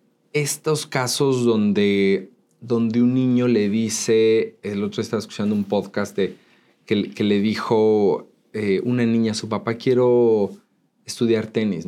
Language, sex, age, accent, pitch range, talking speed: English, male, 30-49, Mexican, 110-125 Hz, 140 wpm